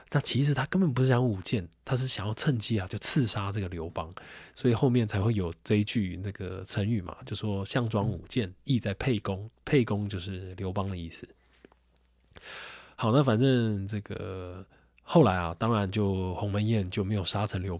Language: Chinese